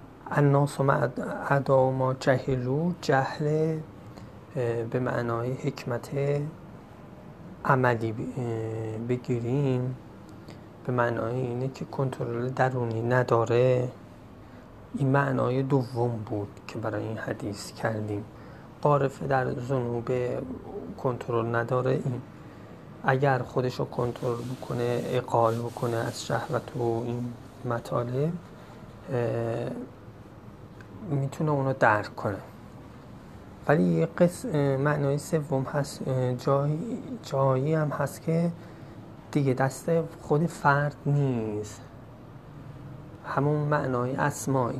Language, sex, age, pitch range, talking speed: Persian, male, 30-49, 115-140 Hz, 90 wpm